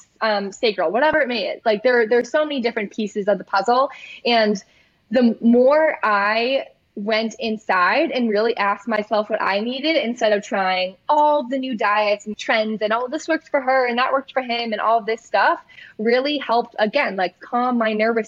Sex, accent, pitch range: female, American, 210-265 Hz